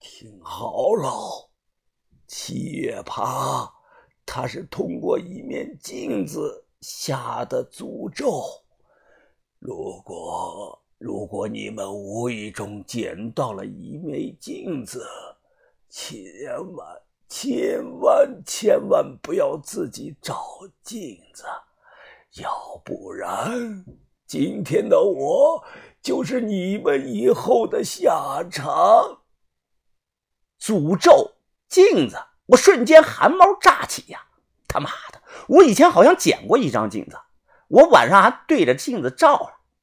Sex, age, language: male, 50-69, Chinese